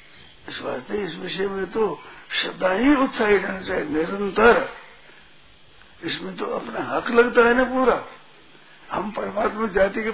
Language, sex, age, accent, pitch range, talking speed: Hindi, male, 60-79, native, 195-235 Hz, 135 wpm